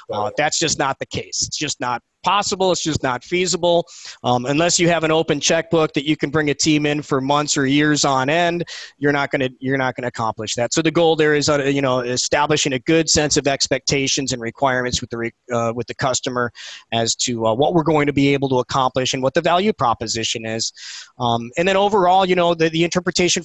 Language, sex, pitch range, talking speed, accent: English, male, 130-155 Hz, 240 wpm, American